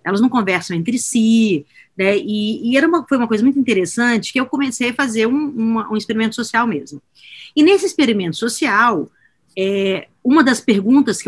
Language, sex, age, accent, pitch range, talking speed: Portuguese, female, 40-59, Brazilian, 190-275 Hz, 165 wpm